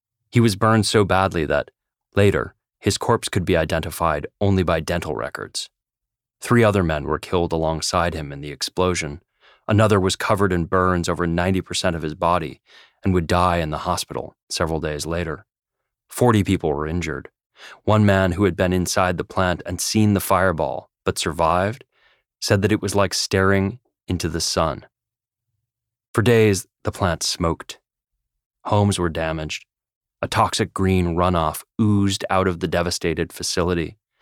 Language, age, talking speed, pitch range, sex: English, 30-49, 160 wpm, 85-105 Hz, male